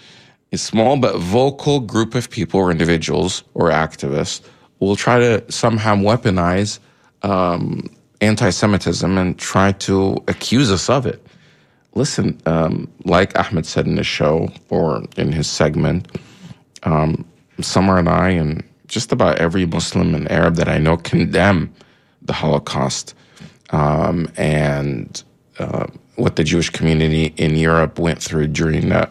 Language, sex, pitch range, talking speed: English, male, 80-100 Hz, 135 wpm